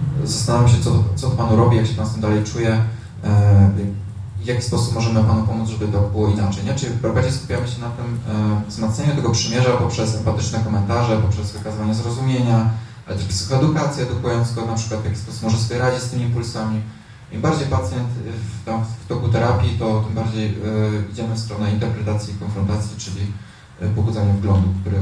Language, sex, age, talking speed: Polish, male, 20-39, 190 wpm